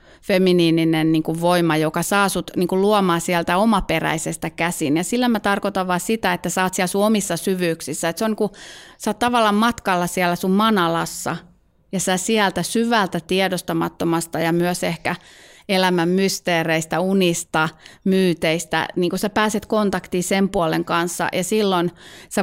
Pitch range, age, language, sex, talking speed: 170-205 Hz, 30-49, Finnish, female, 145 wpm